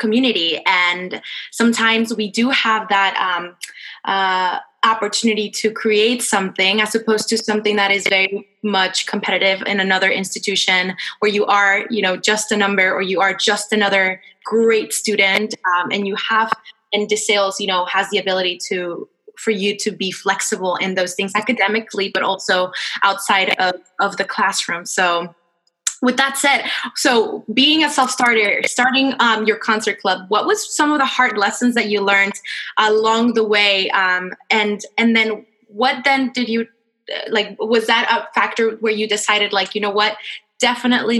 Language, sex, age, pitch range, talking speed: English, female, 20-39, 190-225 Hz, 170 wpm